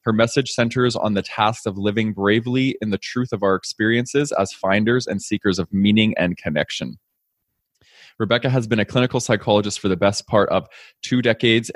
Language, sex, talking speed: English, male, 185 wpm